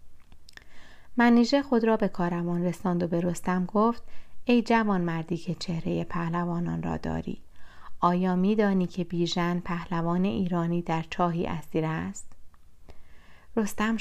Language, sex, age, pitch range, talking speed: Persian, female, 30-49, 165-200 Hz, 120 wpm